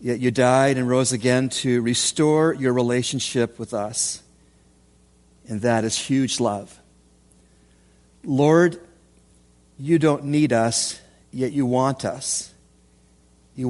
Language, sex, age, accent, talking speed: English, male, 40-59, American, 120 wpm